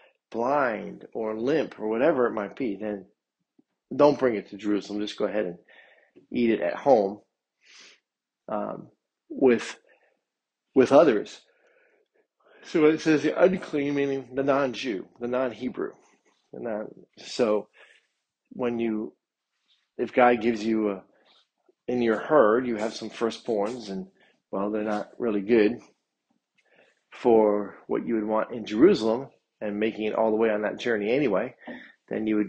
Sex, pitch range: male, 105-130 Hz